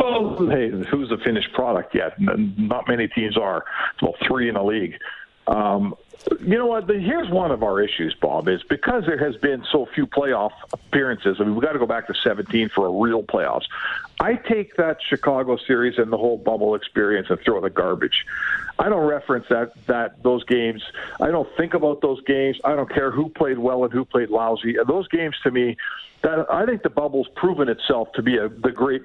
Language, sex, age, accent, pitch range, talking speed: English, male, 50-69, American, 120-170 Hz, 205 wpm